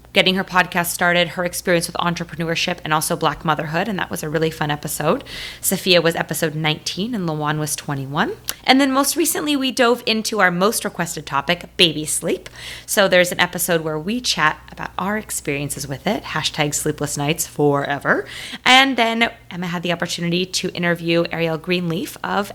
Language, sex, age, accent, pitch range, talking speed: English, female, 20-39, American, 165-230 Hz, 180 wpm